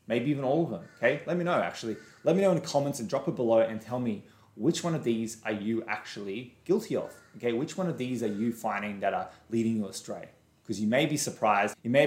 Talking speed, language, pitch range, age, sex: 260 wpm, English, 110-150 Hz, 20-39, male